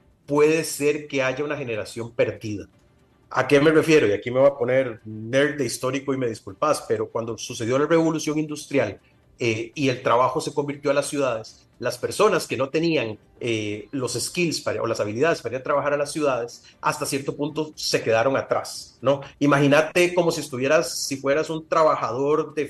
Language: Spanish